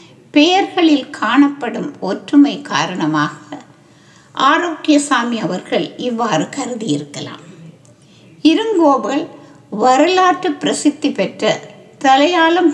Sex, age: female, 60-79